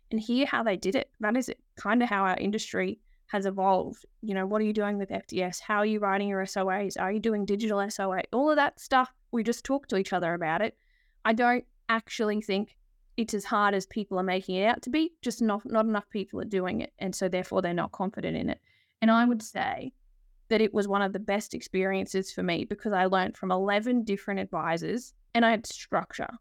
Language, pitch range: English, 190-225 Hz